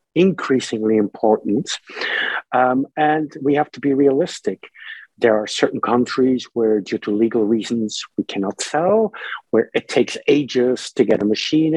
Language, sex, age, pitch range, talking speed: English, male, 50-69, 120-150 Hz, 150 wpm